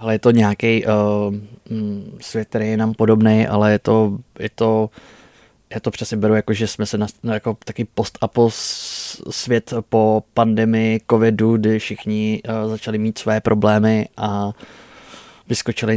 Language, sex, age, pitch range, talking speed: Czech, male, 20-39, 105-115 Hz, 155 wpm